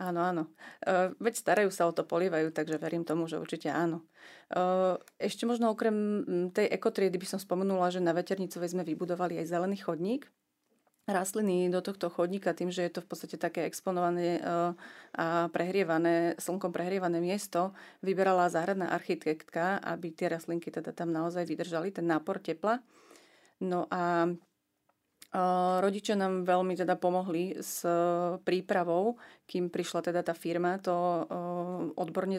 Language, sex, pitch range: Slovak, female, 170-190 Hz